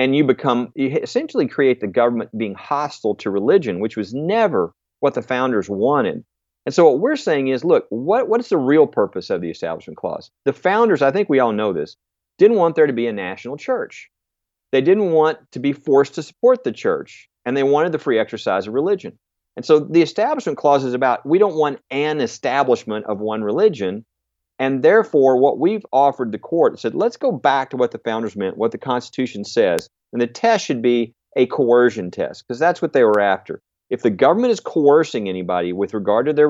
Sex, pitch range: male, 105-160 Hz